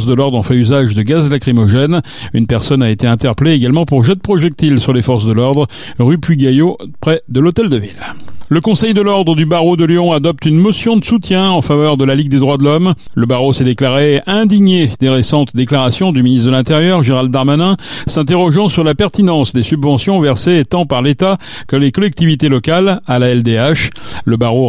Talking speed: 205 wpm